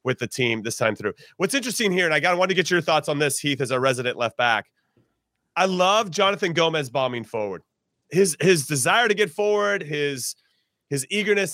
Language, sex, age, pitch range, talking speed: English, male, 30-49, 140-195 Hz, 205 wpm